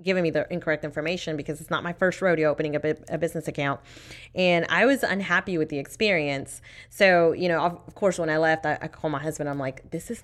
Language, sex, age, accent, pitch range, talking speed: English, female, 20-39, American, 155-180 Hz, 240 wpm